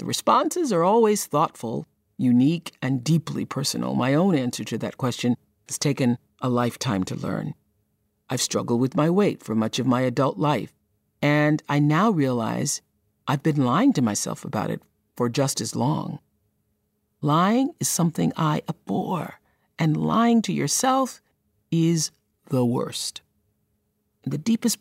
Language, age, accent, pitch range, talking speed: English, 50-69, American, 125-170 Hz, 150 wpm